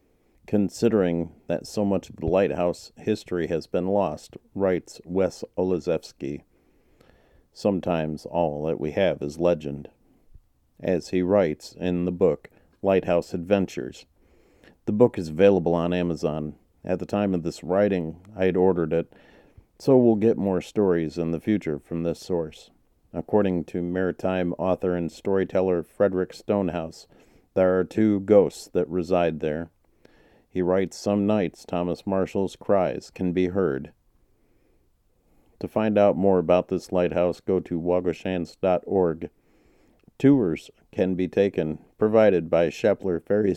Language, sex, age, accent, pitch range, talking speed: English, male, 40-59, American, 85-95 Hz, 135 wpm